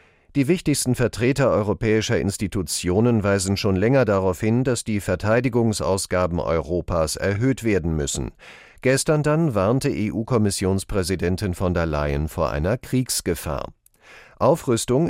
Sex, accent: male, German